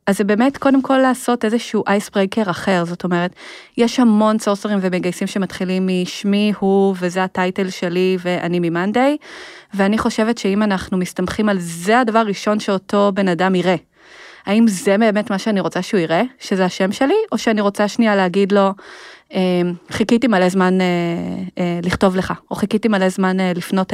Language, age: Hebrew, 20-39